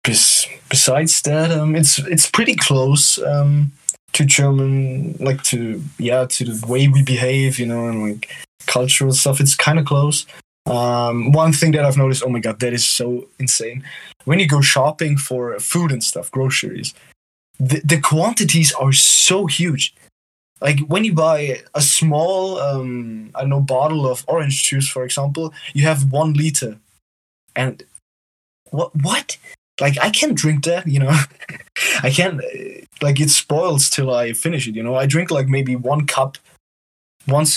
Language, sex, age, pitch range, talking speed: English, male, 20-39, 125-155 Hz, 165 wpm